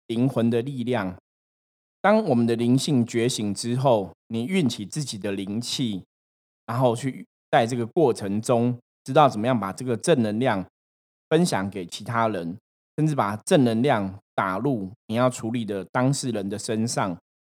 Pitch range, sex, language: 105-140 Hz, male, Chinese